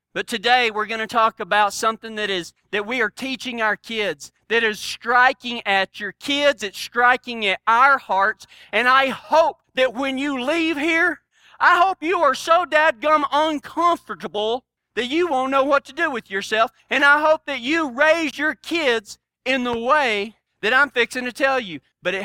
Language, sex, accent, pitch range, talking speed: English, male, American, 205-275 Hz, 190 wpm